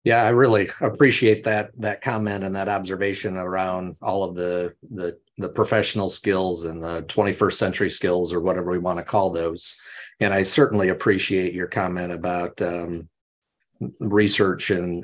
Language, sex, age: English, male, 40-59